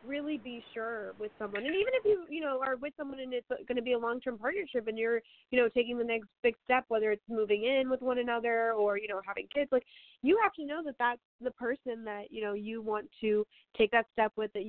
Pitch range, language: 215-260 Hz, English